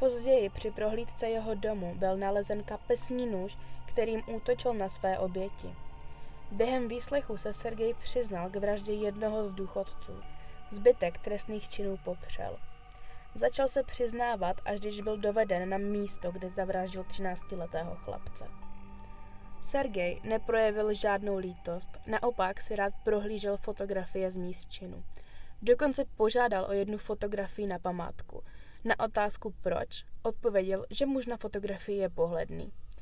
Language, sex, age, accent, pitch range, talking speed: Czech, female, 20-39, native, 185-220 Hz, 125 wpm